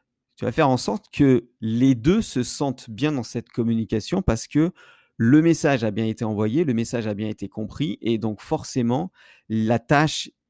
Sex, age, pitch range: male, 50-69, 105-130 Hz